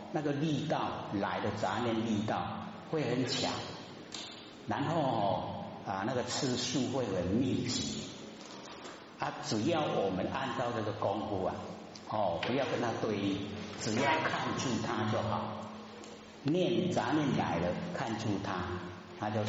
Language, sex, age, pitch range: Chinese, male, 50-69, 95-115 Hz